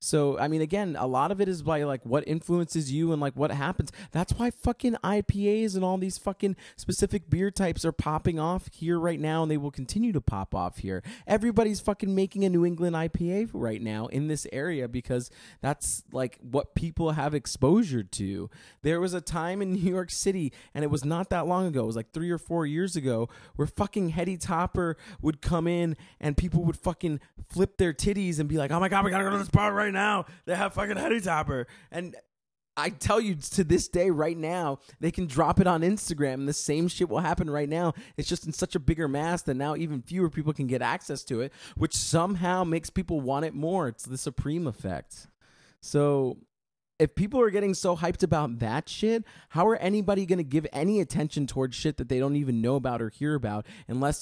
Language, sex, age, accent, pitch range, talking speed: English, male, 20-39, American, 140-185 Hz, 220 wpm